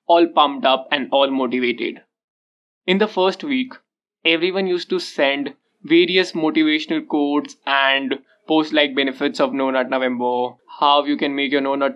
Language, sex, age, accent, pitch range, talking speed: English, male, 20-39, Indian, 140-215 Hz, 160 wpm